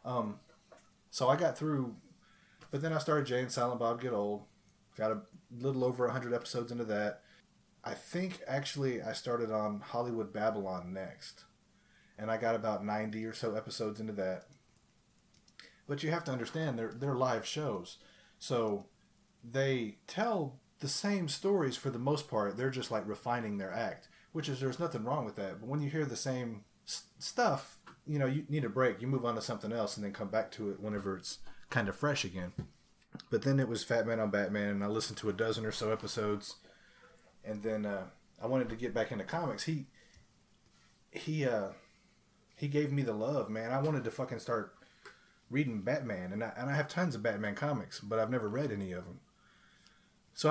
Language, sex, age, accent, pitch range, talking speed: English, male, 30-49, American, 110-135 Hz, 195 wpm